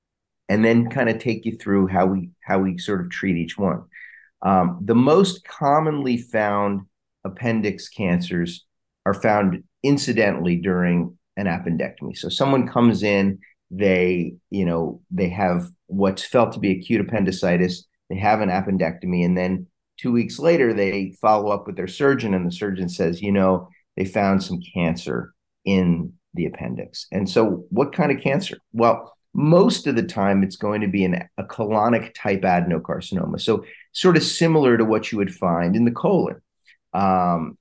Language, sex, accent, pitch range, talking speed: English, male, American, 90-115 Hz, 170 wpm